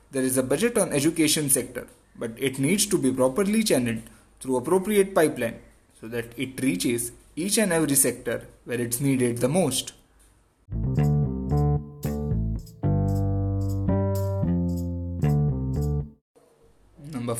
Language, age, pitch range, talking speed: English, 20-39, 115-135 Hz, 105 wpm